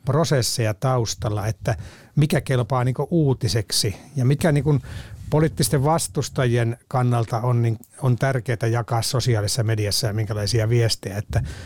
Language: Finnish